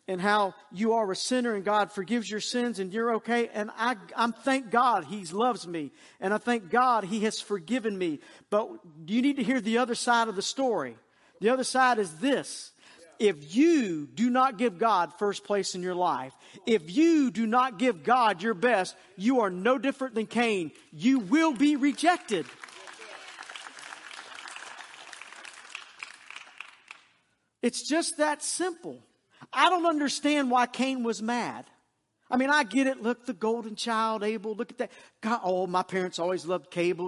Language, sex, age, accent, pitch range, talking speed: English, male, 50-69, American, 190-250 Hz, 170 wpm